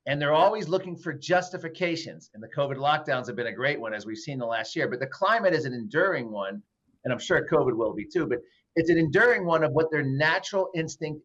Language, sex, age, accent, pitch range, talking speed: English, male, 40-59, American, 135-165 Hz, 240 wpm